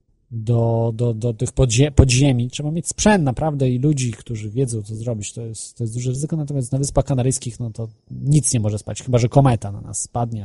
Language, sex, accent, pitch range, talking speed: Polish, male, native, 110-135 Hz, 220 wpm